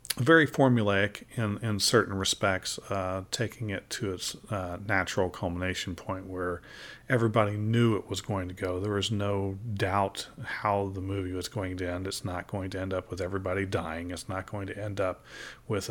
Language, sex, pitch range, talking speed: English, male, 90-110 Hz, 190 wpm